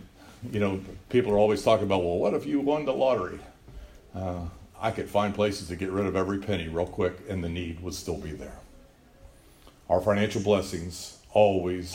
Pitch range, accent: 90-115 Hz, American